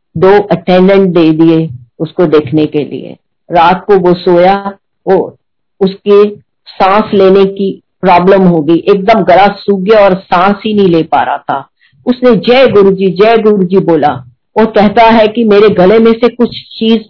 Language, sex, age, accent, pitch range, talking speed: Hindi, female, 50-69, native, 170-205 Hz, 160 wpm